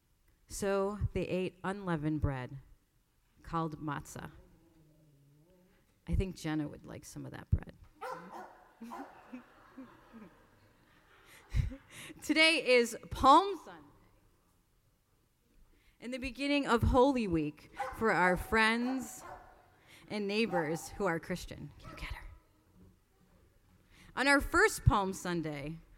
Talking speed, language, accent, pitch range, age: 100 wpm, English, American, 165-255 Hz, 30-49